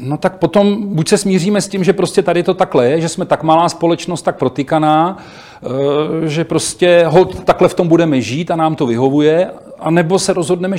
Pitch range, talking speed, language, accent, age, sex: 155-185 Hz, 200 wpm, Czech, native, 40-59, male